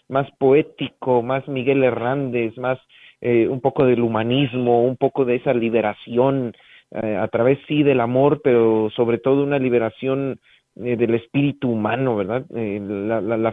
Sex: male